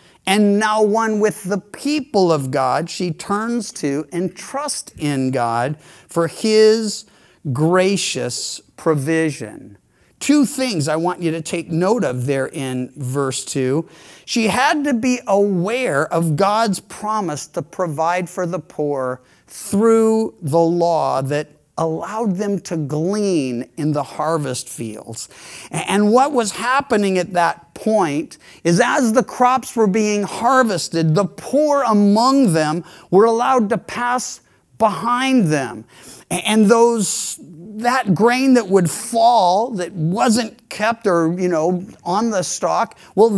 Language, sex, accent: English, male, American